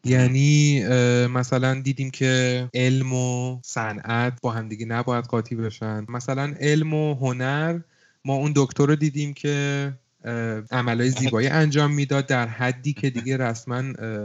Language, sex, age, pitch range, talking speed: Persian, male, 30-49, 115-135 Hz, 130 wpm